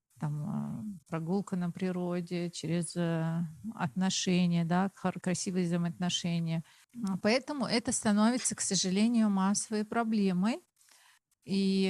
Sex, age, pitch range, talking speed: female, 40-59, 175-210 Hz, 85 wpm